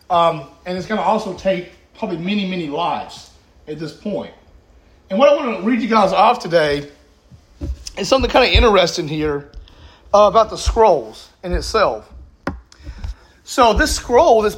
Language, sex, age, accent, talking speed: English, male, 40-59, American, 165 wpm